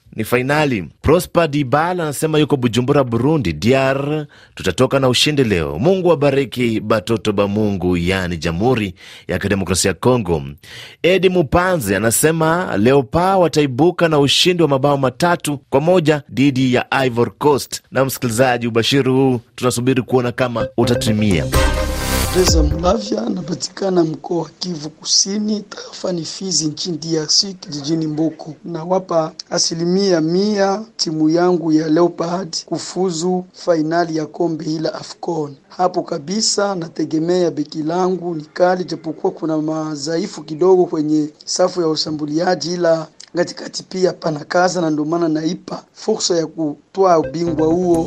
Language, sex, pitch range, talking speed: Swahili, male, 130-175 Hz, 125 wpm